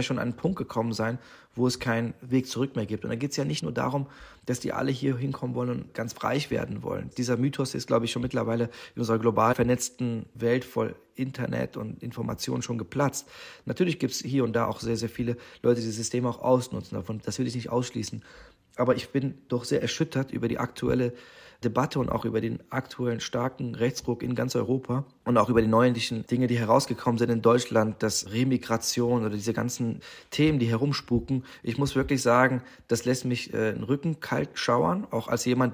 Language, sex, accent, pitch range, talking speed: German, male, German, 115-130 Hz, 210 wpm